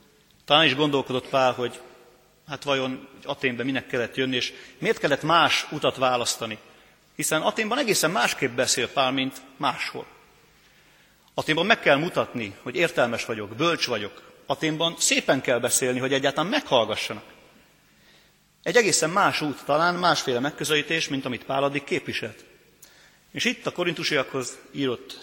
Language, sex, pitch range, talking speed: Hungarian, male, 125-145 Hz, 140 wpm